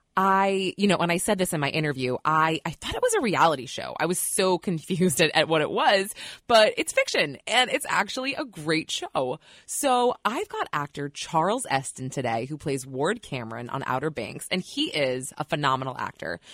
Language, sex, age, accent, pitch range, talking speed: English, female, 20-39, American, 150-220 Hz, 205 wpm